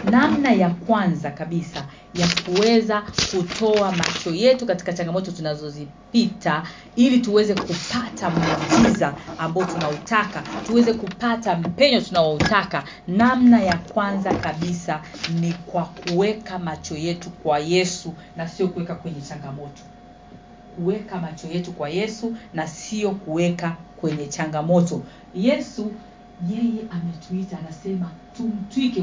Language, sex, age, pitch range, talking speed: Swahili, female, 40-59, 175-235 Hz, 110 wpm